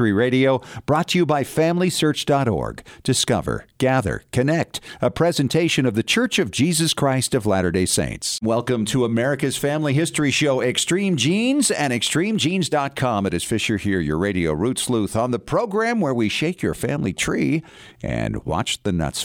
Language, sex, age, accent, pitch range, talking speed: English, male, 50-69, American, 100-140 Hz, 160 wpm